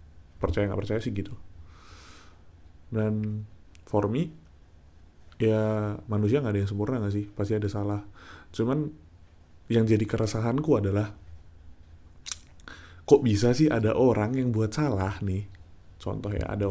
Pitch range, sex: 95-120 Hz, male